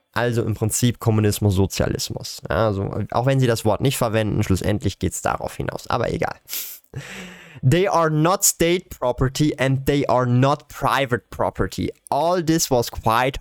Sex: male